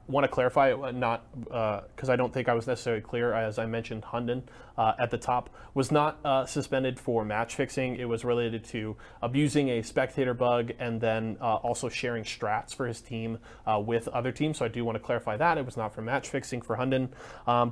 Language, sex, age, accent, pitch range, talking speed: English, male, 20-39, American, 115-130 Hz, 225 wpm